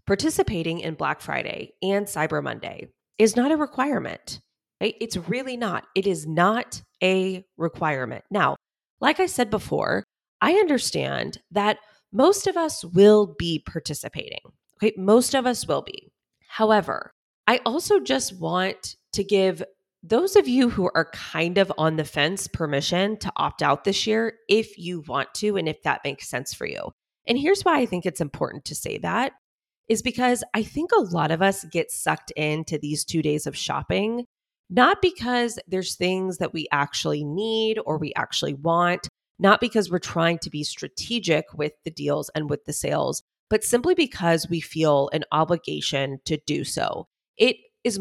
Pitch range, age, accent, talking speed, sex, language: 165-235 Hz, 20-39, American, 170 wpm, female, English